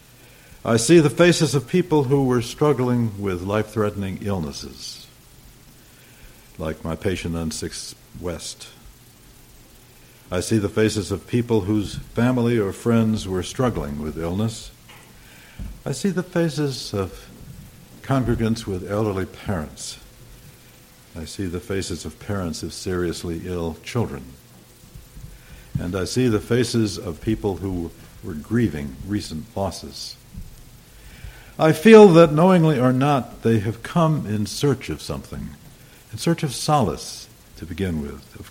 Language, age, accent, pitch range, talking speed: English, 60-79, American, 90-125 Hz, 130 wpm